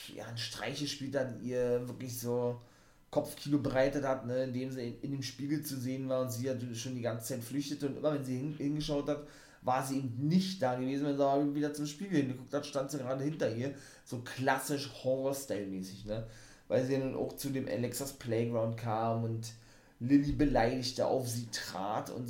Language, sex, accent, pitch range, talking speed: German, male, German, 120-145 Hz, 200 wpm